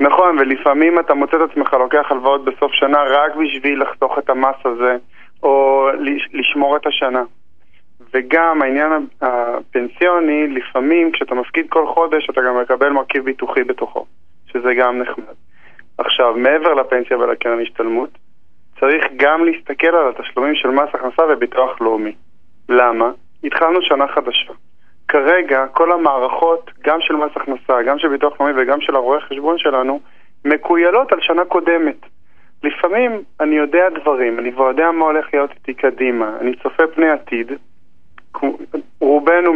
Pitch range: 130-170 Hz